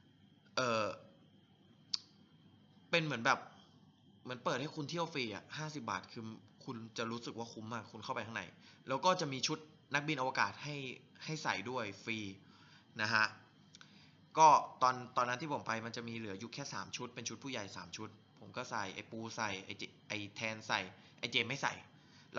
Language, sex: Thai, male